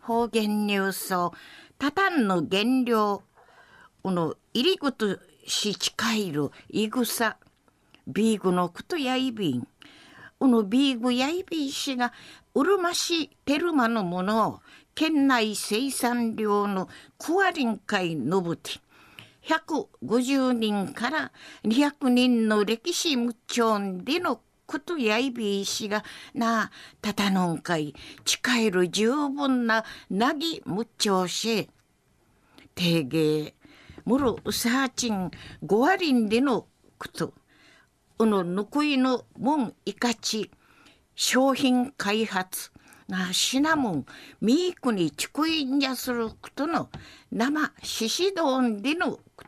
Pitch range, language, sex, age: 200-275 Hz, Japanese, female, 50-69